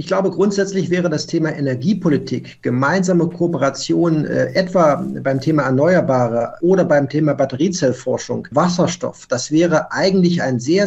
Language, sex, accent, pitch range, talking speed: German, male, German, 145-175 Hz, 135 wpm